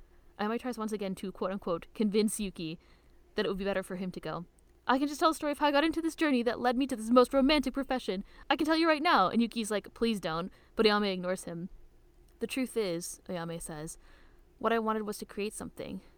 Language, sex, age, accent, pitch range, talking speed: English, female, 10-29, American, 180-220 Hz, 245 wpm